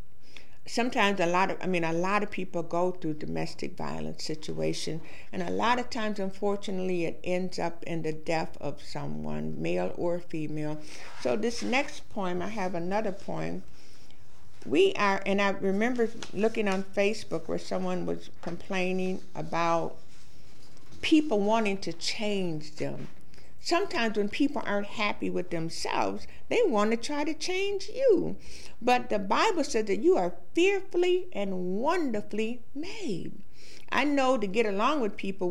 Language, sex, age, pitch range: English, female, 60-79, 165-230 Hz